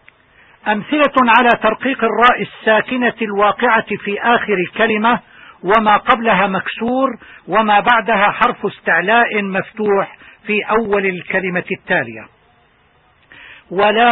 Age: 50-69